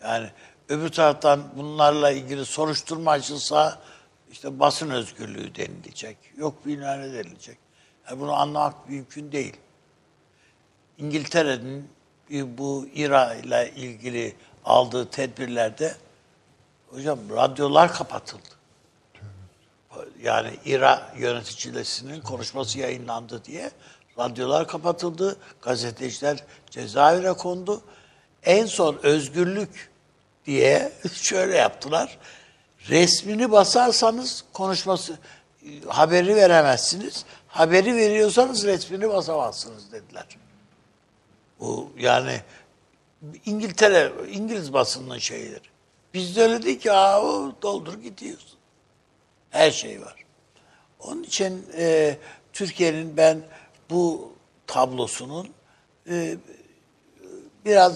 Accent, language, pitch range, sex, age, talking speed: native, Turkish, 135-185 Hz, male, 60-79, 85 wpm